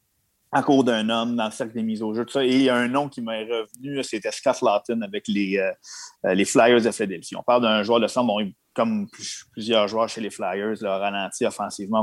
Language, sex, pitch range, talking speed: French, male, 105-130 Hz, 240 wpm